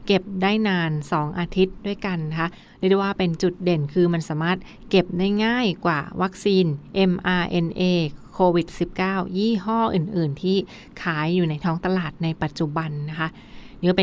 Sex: female